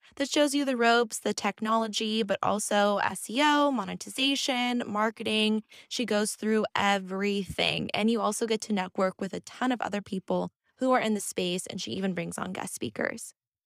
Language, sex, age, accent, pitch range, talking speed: English, female, 20-39, American, 205-250 Hz, 175 wpm